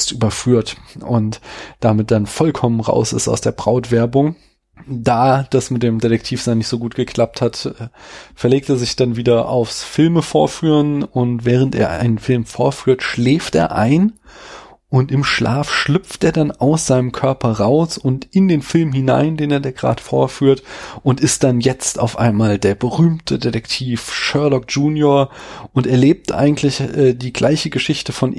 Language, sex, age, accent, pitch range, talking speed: German, male, 20-39, German, 115-140 Hz, 165 wpm